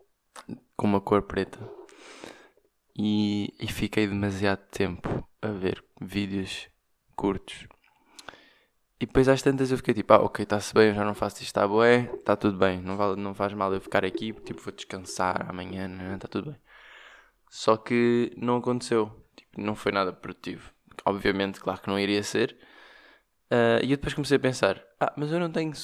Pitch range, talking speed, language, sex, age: 105-130 Hz, 170 wpm, Portuguese, male, 20-39